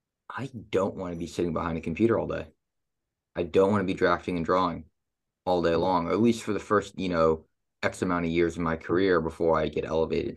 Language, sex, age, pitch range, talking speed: English, male, 20-39, 85-95 Hz, 235 wpm